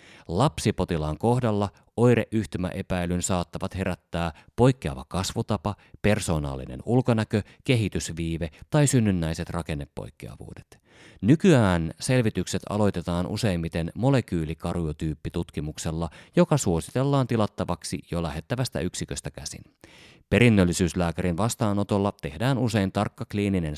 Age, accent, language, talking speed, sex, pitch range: 30-49, native, Finnish, 80 wpm, male, 85-120 Hz